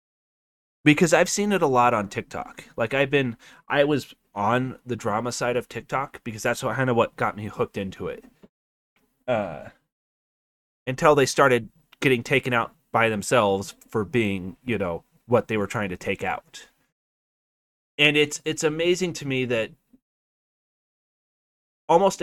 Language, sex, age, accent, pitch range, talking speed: English, male, 30-49, American, 110-140 Hz, 155 wpm